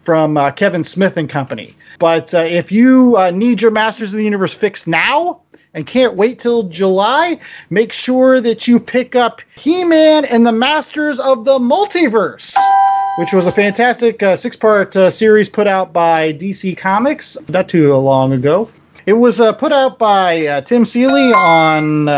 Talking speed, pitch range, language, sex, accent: 170 wpm, 170-240 Hz, English, male, American